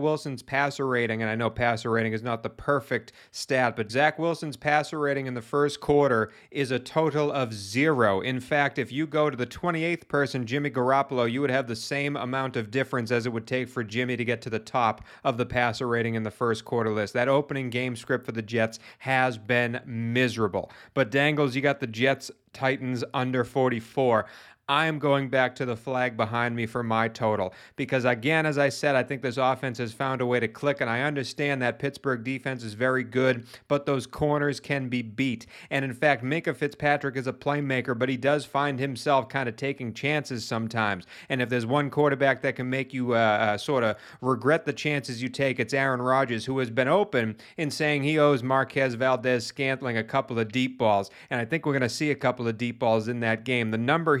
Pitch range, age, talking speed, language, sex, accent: 120-140 Hz, 40-59, 220 wpm, English, male, American